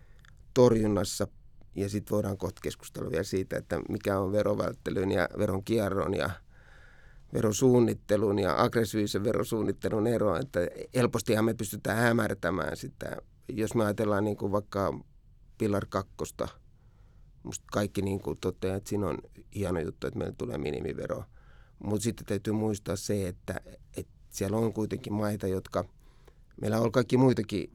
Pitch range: 100-115 Hz